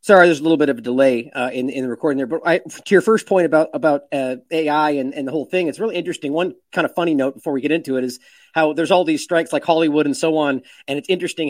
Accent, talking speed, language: American, 290 wpm, English